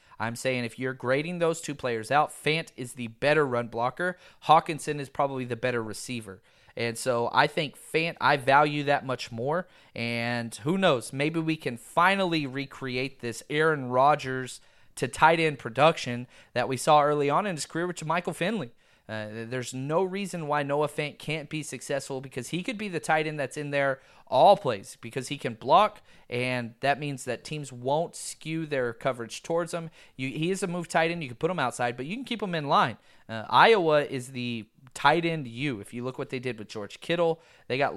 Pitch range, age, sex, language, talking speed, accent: 120-155 Hz, 30-49, male, English, 205 wpm, American